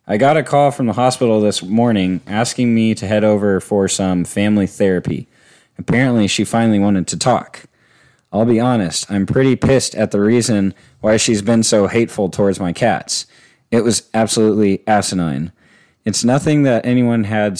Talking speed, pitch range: 170 wpm, 100-120 Hz